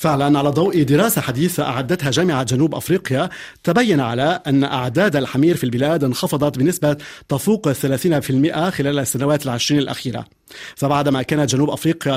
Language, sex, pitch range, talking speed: Arabic, male, 135-170 Hz, 140 wpm